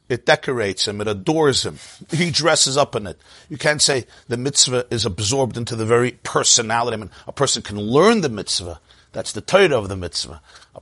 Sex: male